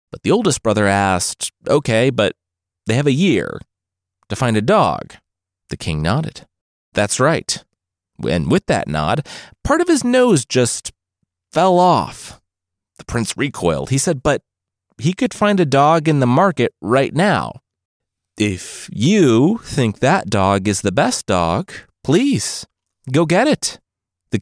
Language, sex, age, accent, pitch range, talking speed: English, male, 30-49, American, 95-145 Hz, 150 wpm